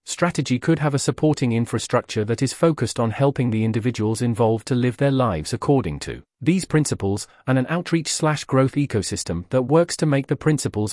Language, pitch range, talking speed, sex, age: English, 110-145 Hz, 185 wpm, male, 40-59